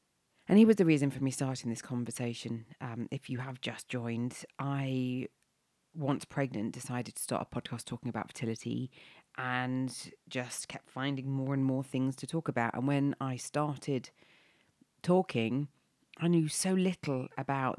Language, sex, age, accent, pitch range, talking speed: English, female, 40-59, British, 125-160 Hz, 160 wpm